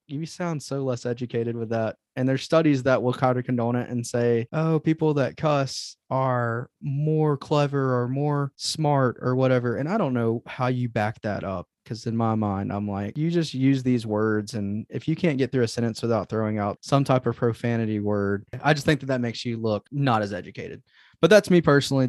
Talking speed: 220 wpm